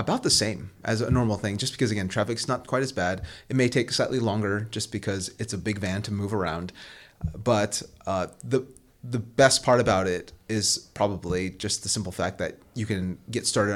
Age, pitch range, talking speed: 30-49, 95-115 Hz, 210 wpm